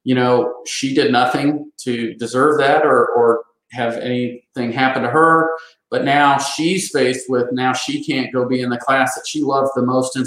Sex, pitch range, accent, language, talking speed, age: male, 125-150 Hz, American, English, 200 wpm, 40-59